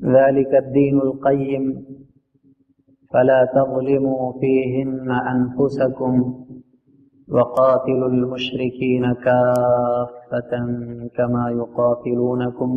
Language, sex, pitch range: Hindi, male, 120-135 Hz